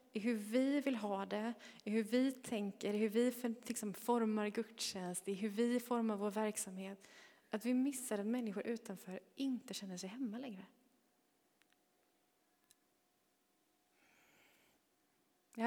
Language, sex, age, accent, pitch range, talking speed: Swedish, female, 20-39, native, 205-250 Hz, 135 wpm